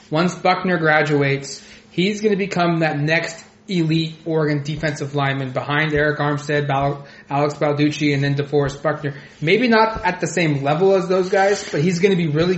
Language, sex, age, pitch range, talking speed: English, male, 20-39, 150-185 Hz, 180 wpm